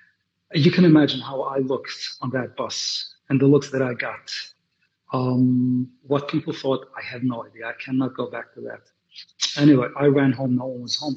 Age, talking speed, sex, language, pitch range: 40-59, 200 wpm, male, English, 125-150 Hz